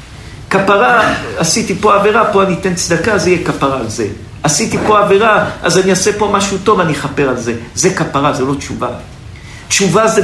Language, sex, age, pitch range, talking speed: Hebrew, male, 50-69, 155-205 Hz, 195 wpm